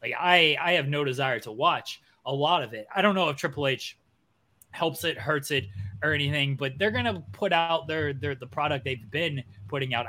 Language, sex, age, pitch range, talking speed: English, male, 20-39, 125-155 Hz, 225 wpm